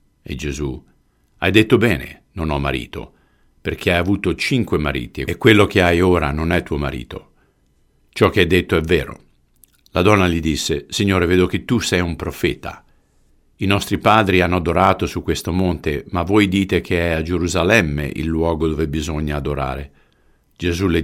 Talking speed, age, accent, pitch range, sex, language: 175 wpm, 50-69, native, 70-90 Hz, male, Italian